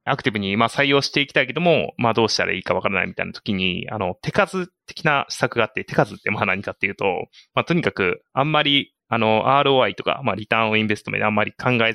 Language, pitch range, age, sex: Japanese, 105-150 Hz, 20-39, male